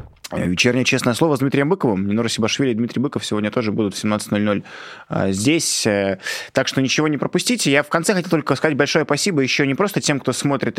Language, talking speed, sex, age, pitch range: Russian, 200 wpm, male, 20-39, 105-140 Hz